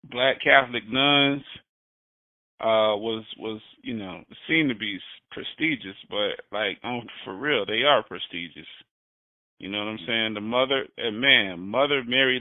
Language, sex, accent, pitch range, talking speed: Dutch, male, American, 110-155 Hz, 145 wpm